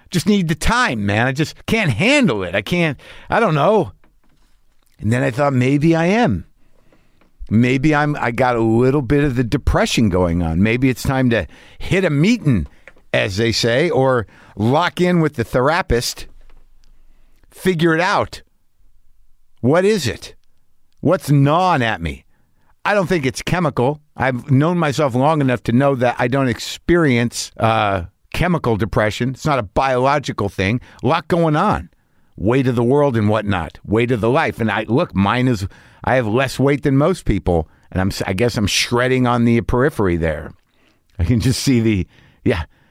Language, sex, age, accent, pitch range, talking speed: English, male, 60-79, American, 105-140 Hz, 175 wpm